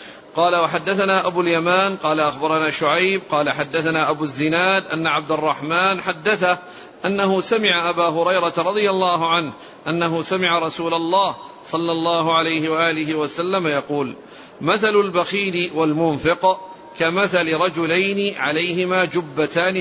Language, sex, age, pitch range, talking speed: Arabic, male, 50-69, 160-190 Hz, 120 wpm